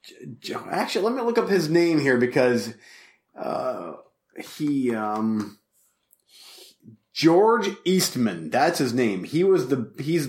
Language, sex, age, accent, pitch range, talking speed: English, male, 30-49, American, 120-150 Hz, 130 wpm